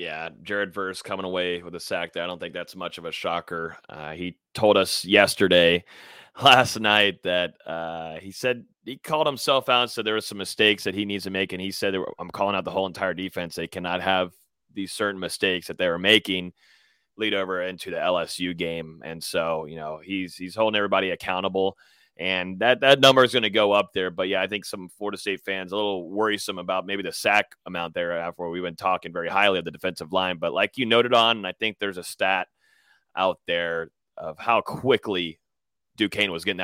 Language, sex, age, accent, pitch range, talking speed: English, male, 30-49, American, 85-105 Hz, 220 wpm